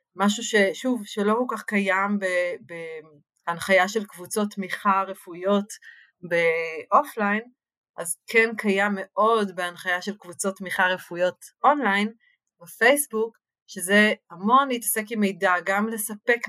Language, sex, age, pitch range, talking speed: Hebrew, female, 30-49, 185-225 Hz, 110 wpm